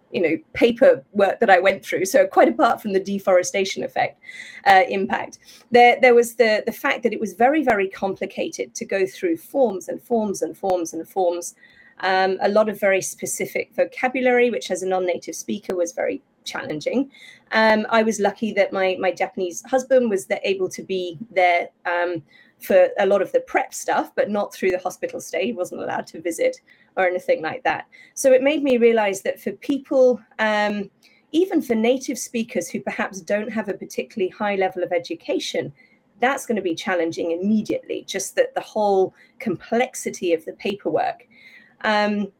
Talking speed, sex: 185 wpm, female